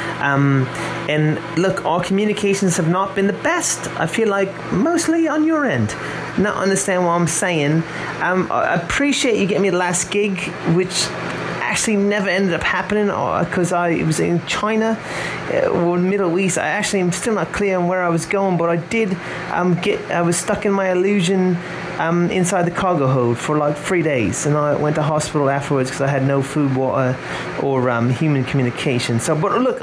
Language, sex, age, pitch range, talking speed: English, male, 30-49, 145-190 Hz, 190 wpm